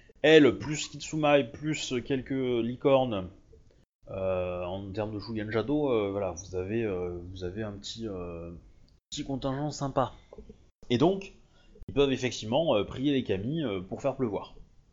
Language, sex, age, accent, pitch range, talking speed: French, male, 20-39, French, 95-130 Hz, 155 wpm